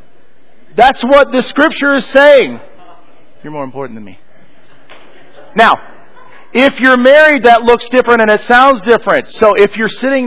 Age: 40-59